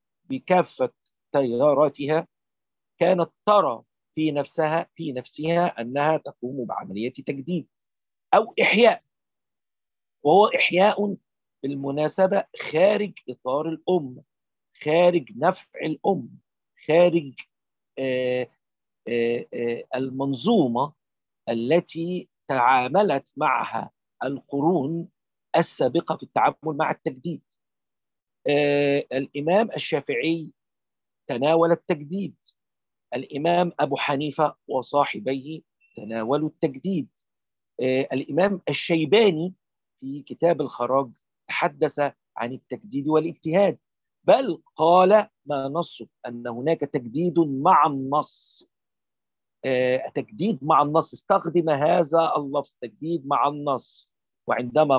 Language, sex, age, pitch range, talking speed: Arabic, male, 50-69, 135-170 Hz, 80 wpm